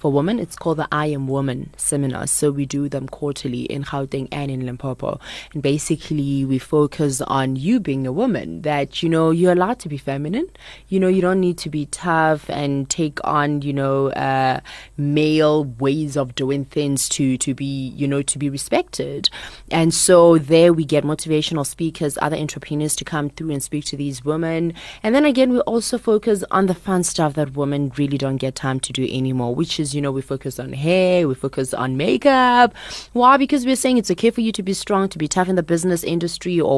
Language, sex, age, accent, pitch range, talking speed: English, female, 20-39, South African, 140-175 Hz, 210 wpm